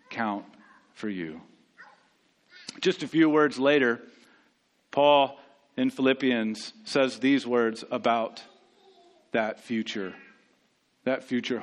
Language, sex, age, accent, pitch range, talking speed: English, male, 40-59, American, 115-145 Hz, 100 wpm